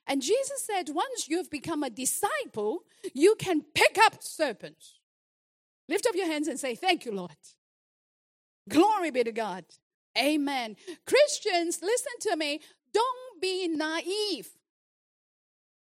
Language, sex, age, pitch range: English, female, 40-59, 240-350 Hz